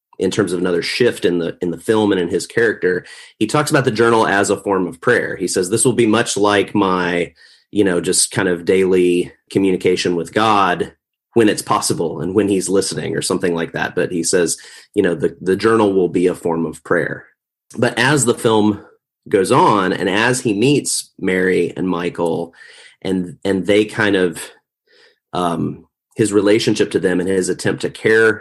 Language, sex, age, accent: English, male, 30-49, American